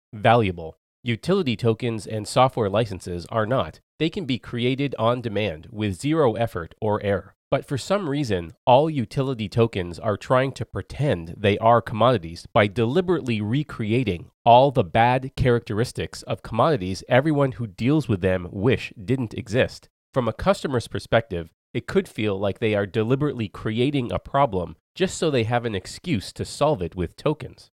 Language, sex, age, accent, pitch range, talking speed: English, male, 30-49, American, 105-135 Hz, 160 wpm